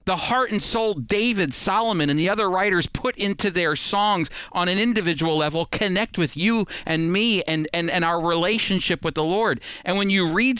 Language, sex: English, male